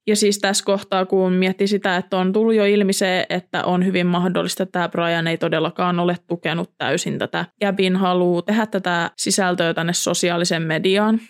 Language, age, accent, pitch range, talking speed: Finnish, 20-39, native, 175-205 Hz, 180 wpm